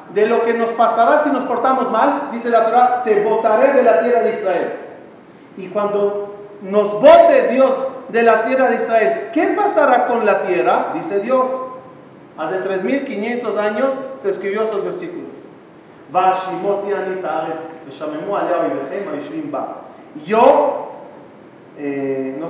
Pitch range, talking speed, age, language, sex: 200-255 Hz, 125 wpm, 40-59, Spanish, male